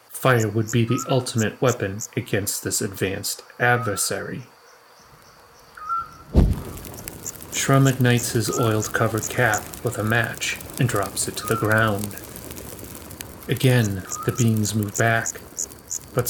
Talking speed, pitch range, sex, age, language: 115 wpm, 105-125 Hz, male, 30-49, English